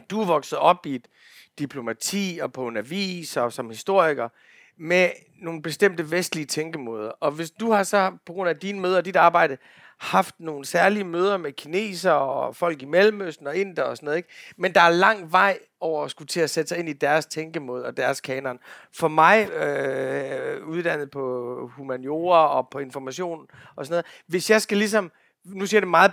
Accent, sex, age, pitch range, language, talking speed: native, male, 40-59, 150-190 Hz, Danish, 200 wpm